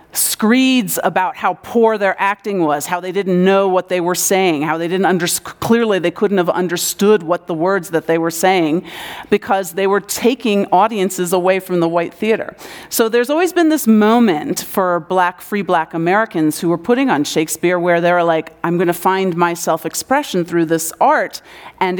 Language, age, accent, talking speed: English, 40-59, American, 190 wpm